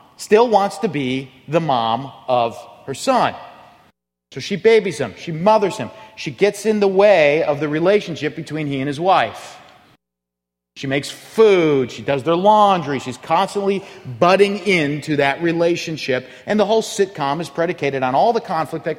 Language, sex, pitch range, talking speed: English, male, 135-205 Hz, 170 wpm